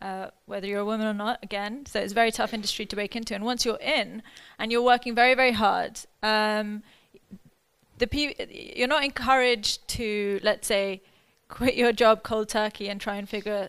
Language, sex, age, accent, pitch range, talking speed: English, female, 20-39, British, 200-225 Hz, 195 wpm